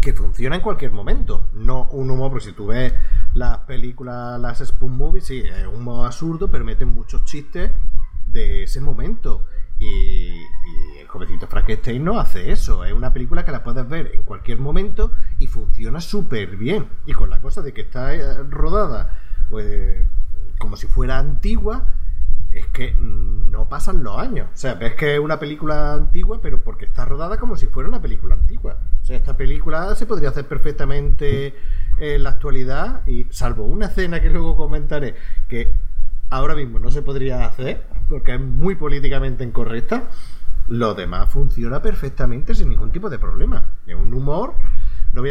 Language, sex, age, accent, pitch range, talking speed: Spanish, male, 30-49, Spanish, 105-145 Hz, 175 wpm